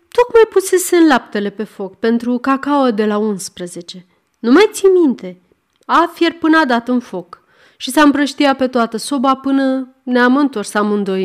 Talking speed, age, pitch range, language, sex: 170 wpm, 30-49, 200-305 Hz, Romanian, female